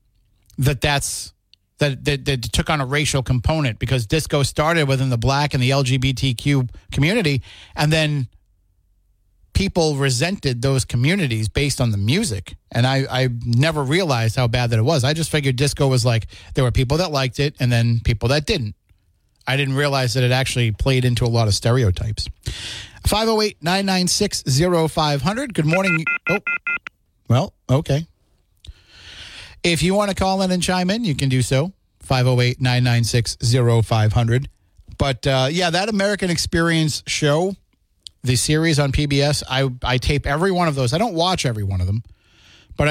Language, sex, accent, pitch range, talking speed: English, male, American, 115-150 Hz, 160 wpm